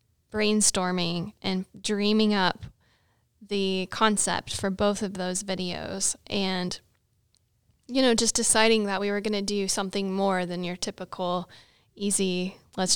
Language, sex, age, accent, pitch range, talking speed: English, female, 10-29, American, 185-210 Hz, 135 wpm